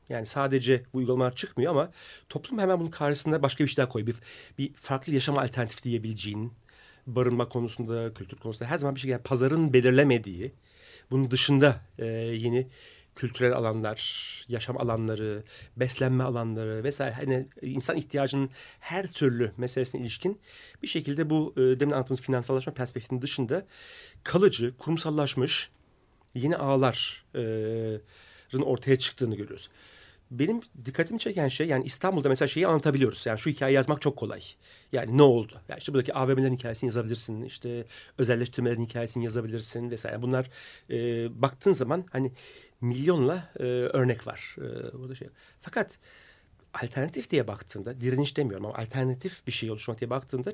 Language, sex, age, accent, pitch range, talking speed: Turkish, male, 40-59, native, 115-140 Hz, 140 wpm